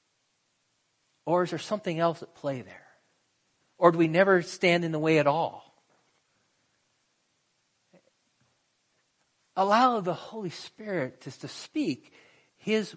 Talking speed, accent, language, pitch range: 120 wpm, American, English, 135-170 Hz